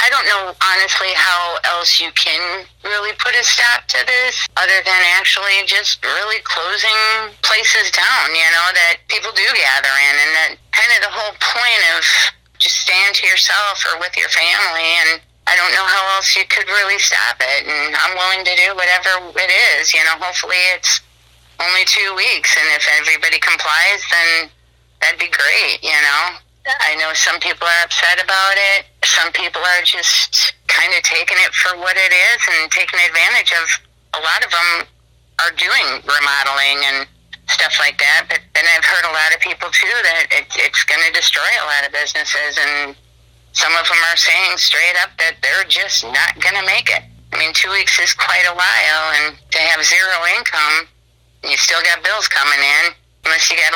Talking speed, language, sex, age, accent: 195 wpm, English, female, 30-49, American